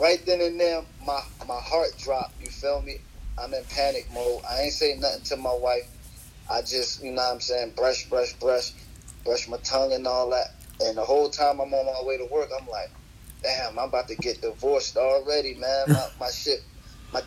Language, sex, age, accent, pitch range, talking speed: English, male, 30-49, American, 125-170 Hz, 215 wpm